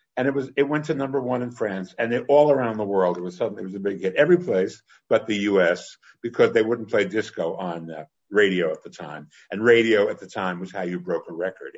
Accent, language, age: American, English, 60-79